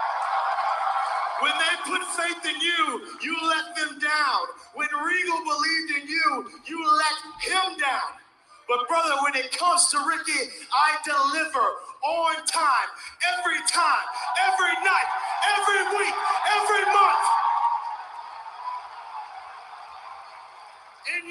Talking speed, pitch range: 110 wpm, 280-380 Hz